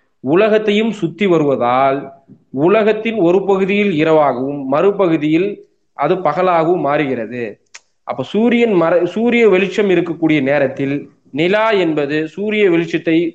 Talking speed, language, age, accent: 100 wpm, Tamil, 20-39, native